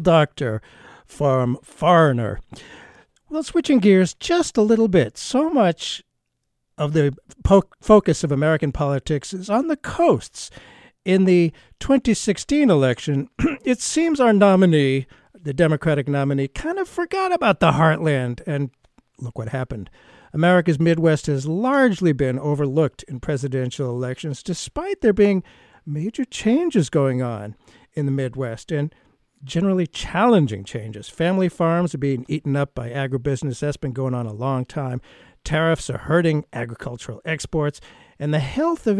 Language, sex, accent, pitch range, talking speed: English, male, American, 135-190 Hz, 140 wpm